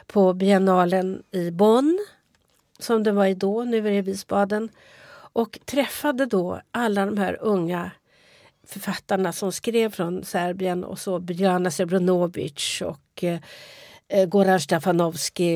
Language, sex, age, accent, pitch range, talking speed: Swedish, female, 50-69, native, 180-225 Hz, 130 wpm